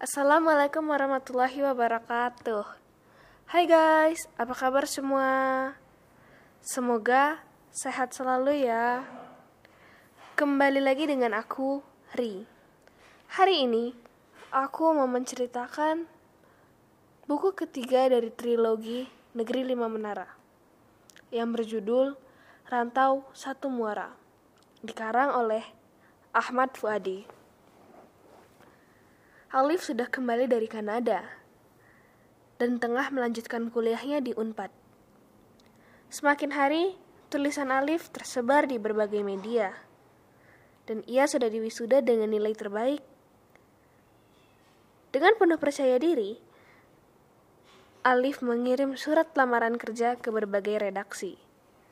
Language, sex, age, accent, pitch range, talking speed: Indonesian, female, 10-29, native, 230-275 Hz, 90 wpm